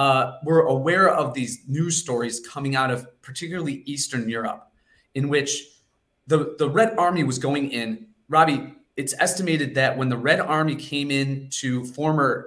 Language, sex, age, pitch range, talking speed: English, male, 30-49, 120-150 Hz, 165 wpm